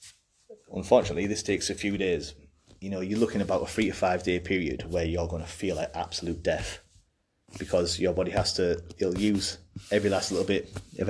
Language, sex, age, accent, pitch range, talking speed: English, male, 30-49, British, 85-100 Hz, 200 wpm